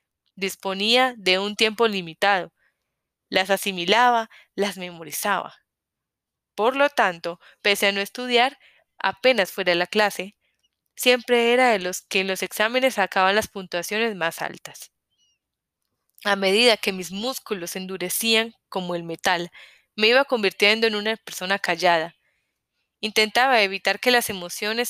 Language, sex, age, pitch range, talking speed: Spanish, female, 10-29, 185-220 Hz, 135 wpm